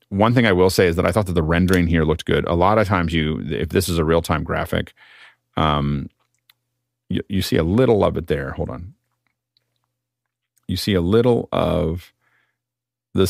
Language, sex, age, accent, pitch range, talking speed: English, male, 40-59, American, 80-100 Hz, 195 wpm